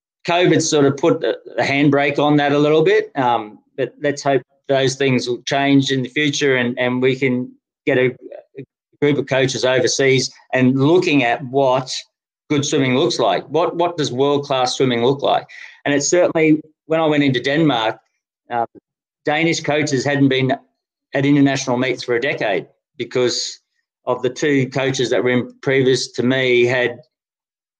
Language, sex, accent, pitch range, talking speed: English, male, Australian, 125-150 Hz, 170 wpm